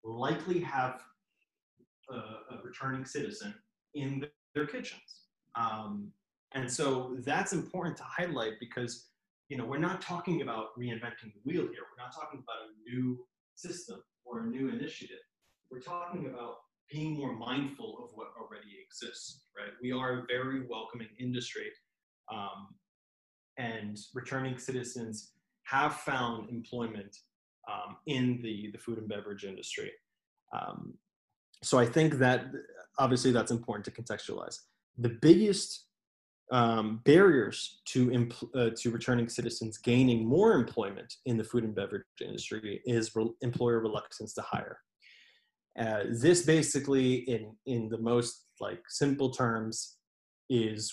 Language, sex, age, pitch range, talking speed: English, male, 20-39, 115-140 Hz, 135 wpm